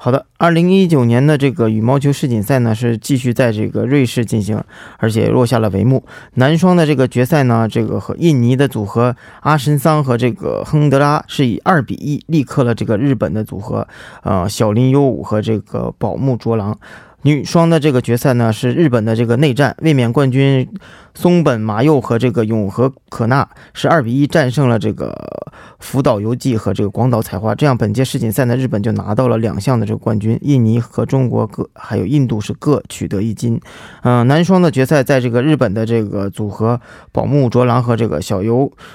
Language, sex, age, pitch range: Korean, male, 20-39, 110-140 Hz